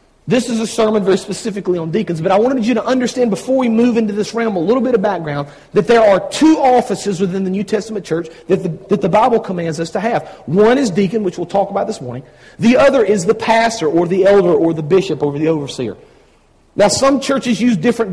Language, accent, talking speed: English, American, 235 wpm